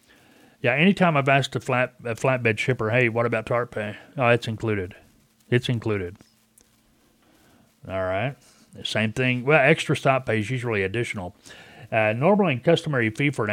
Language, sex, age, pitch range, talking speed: English, male, 40-59, 105-130 Hz, 160 wpm